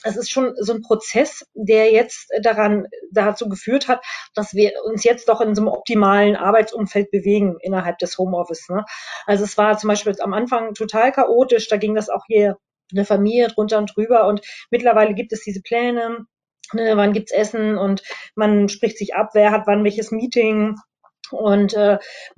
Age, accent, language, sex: 20-39, German, German, female